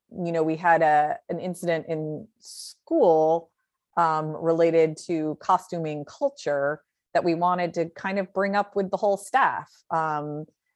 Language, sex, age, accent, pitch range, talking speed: English, female, 30-49, American, 150-185 Hz, 150 wpm